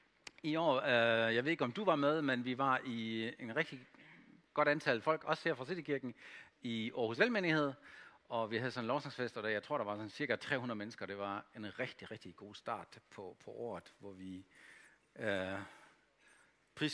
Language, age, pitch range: Danish, 60-79, 125-180 Hz